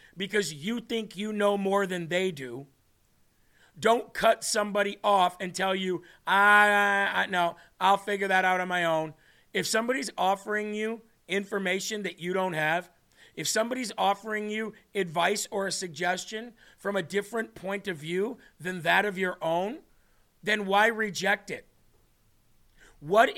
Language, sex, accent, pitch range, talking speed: English, male, American, 180-210 Hz, 155 wpm